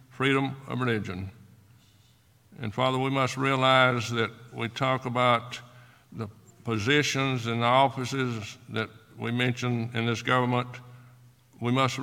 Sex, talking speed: male, 125 wpm